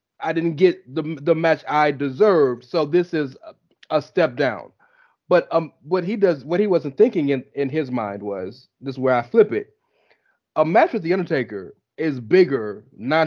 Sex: male